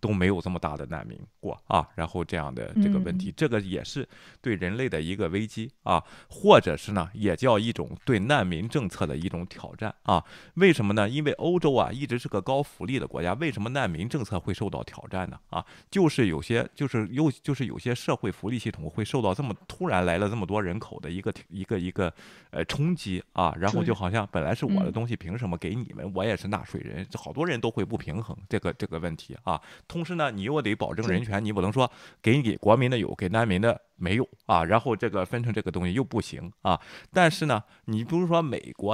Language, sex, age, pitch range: Chinese, male, 30-49, 90-130 Hz